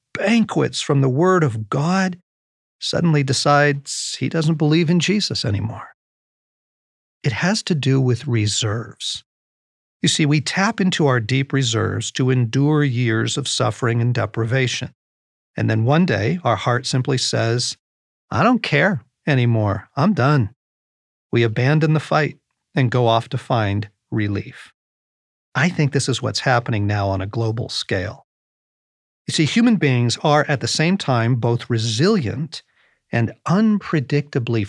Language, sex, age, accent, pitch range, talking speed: English, male, 40-59, American, 110-155 Hz, 145 wpm